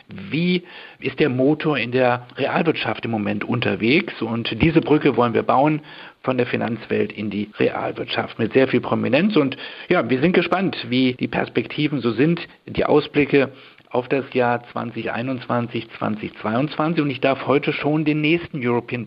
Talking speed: 160 wpm